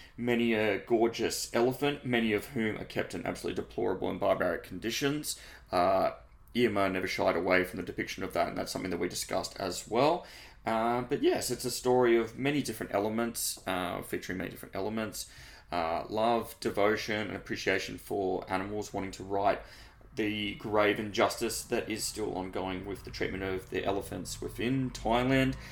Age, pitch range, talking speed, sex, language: 20-39, 100-120 Hz, 170 wpm, male, English